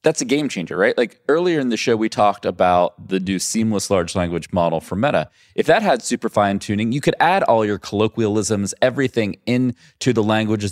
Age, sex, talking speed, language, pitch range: 30-49, male, 205 wpm, English, 95-115 Hz